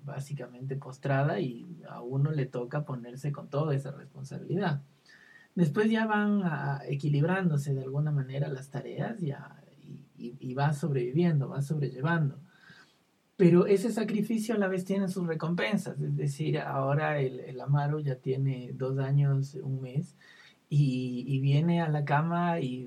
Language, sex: Spanish, male